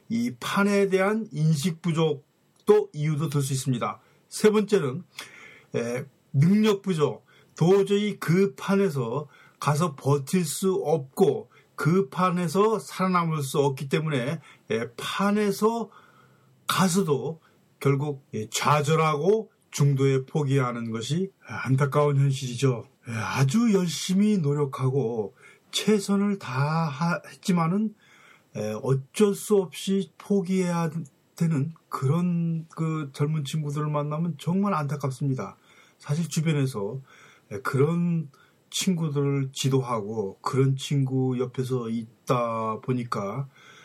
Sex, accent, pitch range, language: male, native, 135-185 Hz, Korean